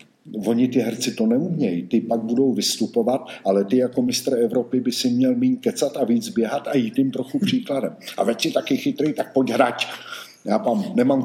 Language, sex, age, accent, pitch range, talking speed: Czech, male, 50-69, native, 115-170 Hz, 205 wpm